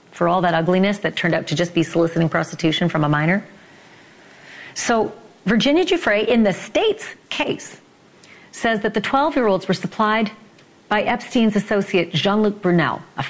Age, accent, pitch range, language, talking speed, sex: 40-59, American, 165-230 Hz, English, 155 wpm, female